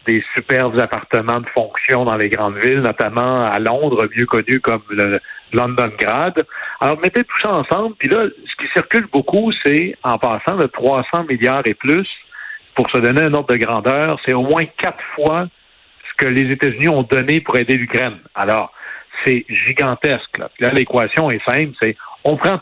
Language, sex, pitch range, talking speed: French, male, 120-150 Hz, 185 wpm